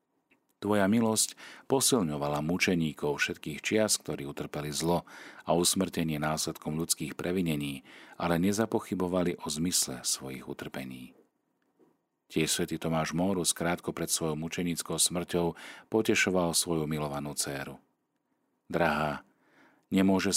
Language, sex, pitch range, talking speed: Slovak, male, 75-90 Hz, 105 wpm